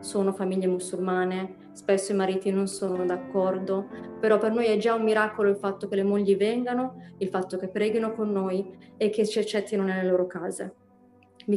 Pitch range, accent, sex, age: 190-215 Hz, native, female, 20-39